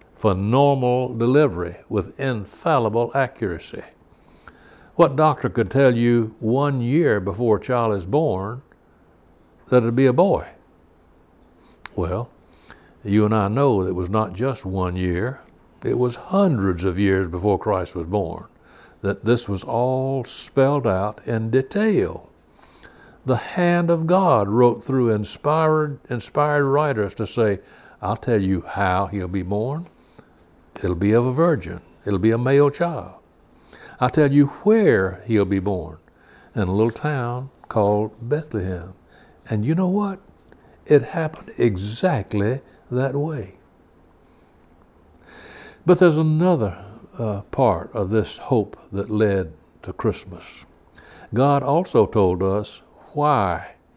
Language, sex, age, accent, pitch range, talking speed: English, male, 60-79, American, 95-135 Hz, 130 wpm